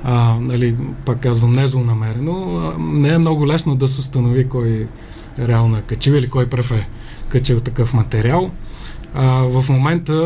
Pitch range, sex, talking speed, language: 120-140 Hz, male, 150 wpm, Bulgarian